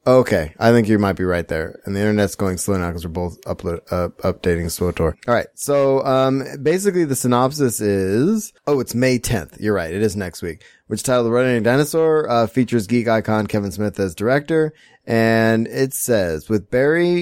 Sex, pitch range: male, 100-125 Hz